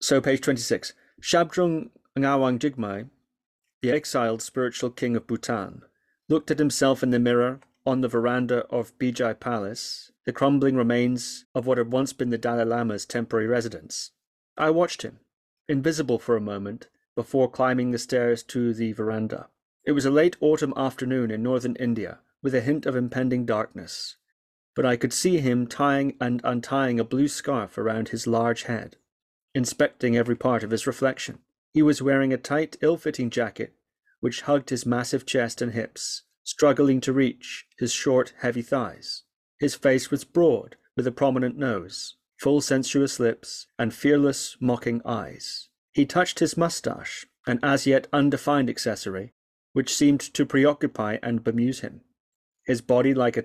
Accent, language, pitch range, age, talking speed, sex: British, English, 120-140 Hz, 30-49, 160 wpm, male